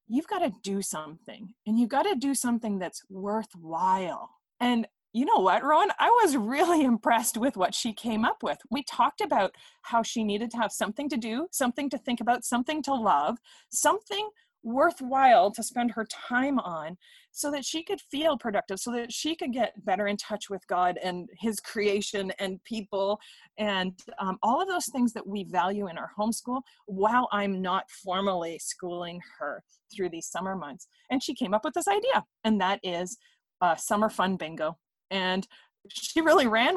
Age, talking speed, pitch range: 30-49, 185 wpm, 200-270 Hz